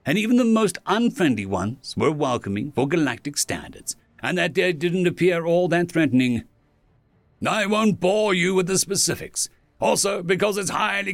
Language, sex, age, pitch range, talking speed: English, male, 60-79, 145-220 Hz, 170 wpm